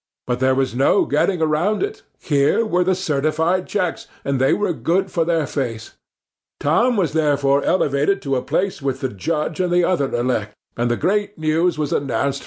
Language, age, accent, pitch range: Korean, 50-69, American, 125-180 Hz